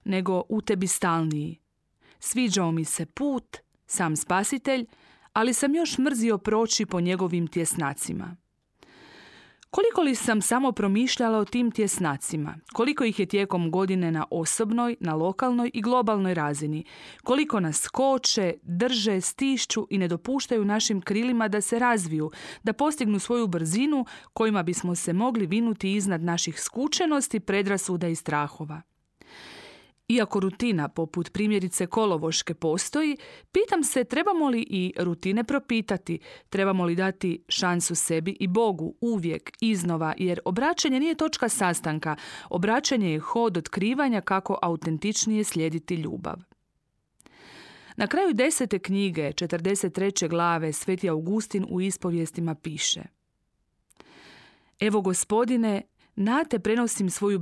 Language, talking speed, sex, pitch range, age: Croatian, 120 wpm, female, 175-235 Hz, 30-49